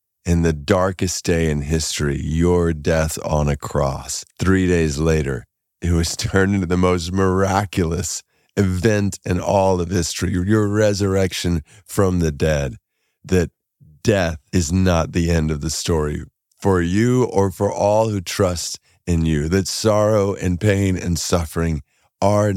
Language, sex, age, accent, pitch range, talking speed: English, male, 40-59, American, 80-95 Hz, 150 wpm